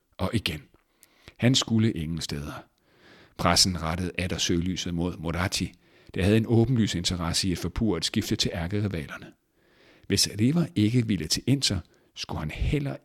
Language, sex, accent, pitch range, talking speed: Danish, male, native, 85-110 Hz, 160 wpm